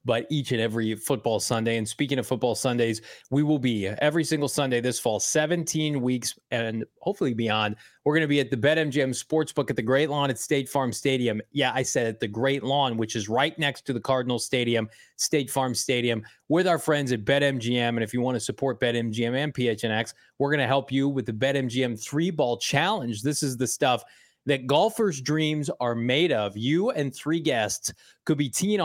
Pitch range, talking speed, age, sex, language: 120-155 Hz, 210 wpm, 20-39, male, English